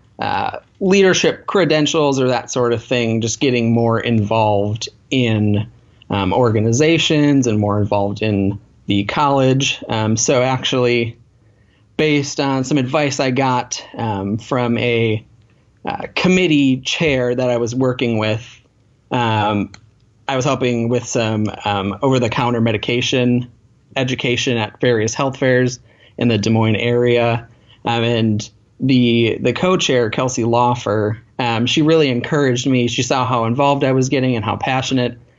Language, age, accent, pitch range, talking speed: English, 30-49, American, 110-130 Hz, 140 wpm